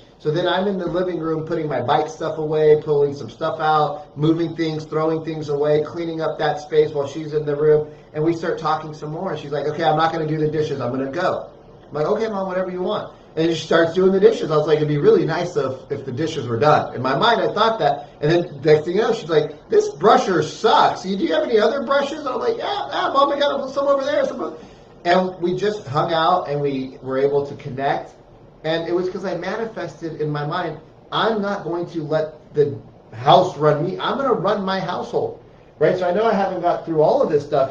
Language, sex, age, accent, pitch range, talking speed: English, male, 30-49, American, 145-175 Hz, 260 wpm